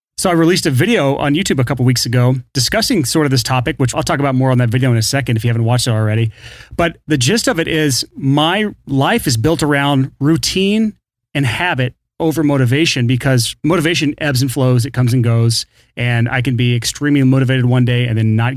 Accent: American